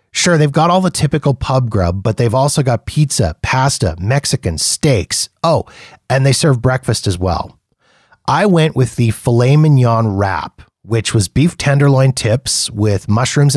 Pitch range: 100-135 Hz